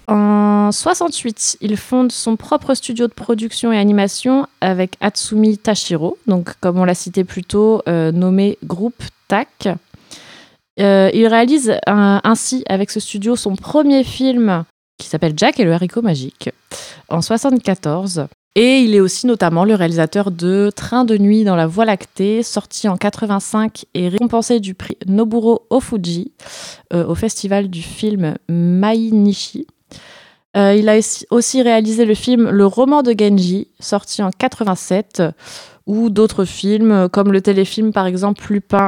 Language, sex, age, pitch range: French, female, 20-39, 185-225 Hz